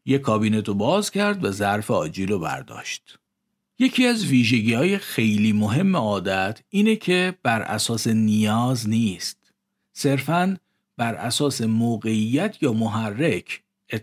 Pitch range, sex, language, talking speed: 110-165 Hz, male, Persian, 125 wpm